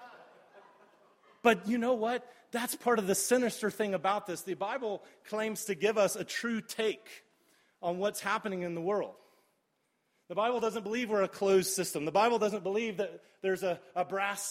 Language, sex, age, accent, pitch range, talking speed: English, male, 30-49, American, 165-220 Hz, 180 wpm